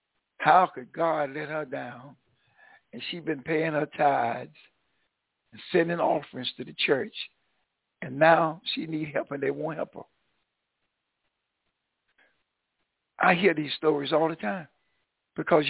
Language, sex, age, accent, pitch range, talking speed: English, male, 60-79, American, 160-220 Hz, 140 wpm